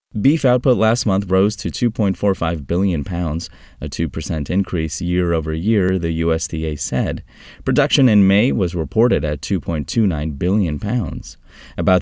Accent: American